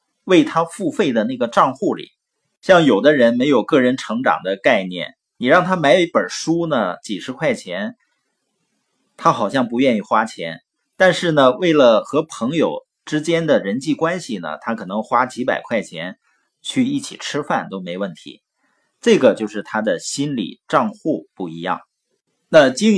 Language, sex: Chinese, male